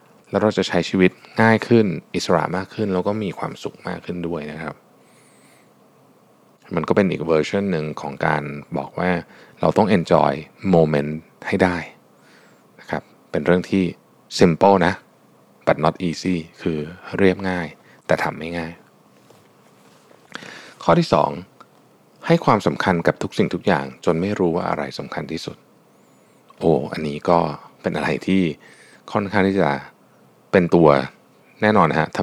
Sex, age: male, 20-39